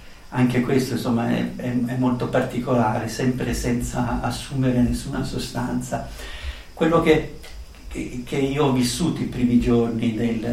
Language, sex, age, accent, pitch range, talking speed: Italian, male, 60-79, native, 115-125 Hz, 120 wpm